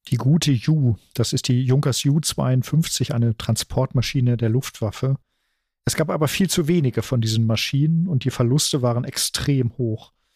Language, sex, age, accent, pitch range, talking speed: German, male, 40-59, German, 120-140 Hz, 160 wpm